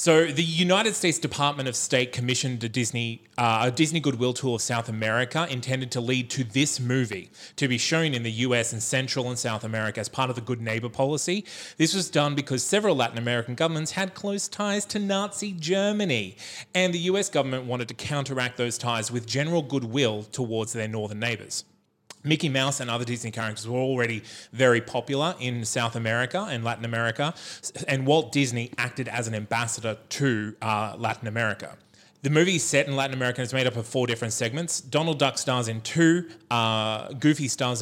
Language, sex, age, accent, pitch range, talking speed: English, male, 20-39, Australian, 115-145 Hz, 185 wpm